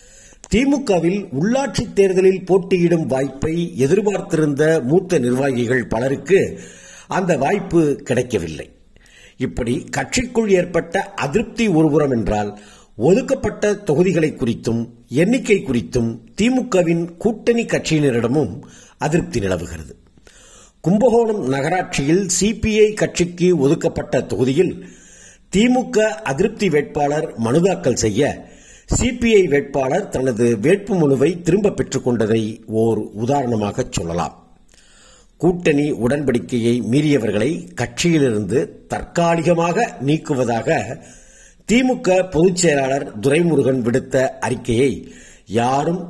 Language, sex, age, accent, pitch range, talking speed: Tamil, male, 50-69, native, 125-190 Hz, 80 wpm